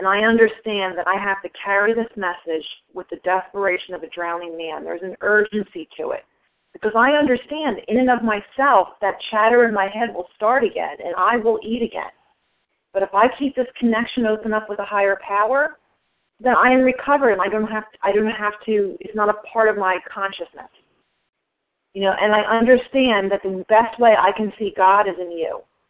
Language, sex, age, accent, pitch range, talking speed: English, female, 40-59, American, 190-235 Hz, 195 wpm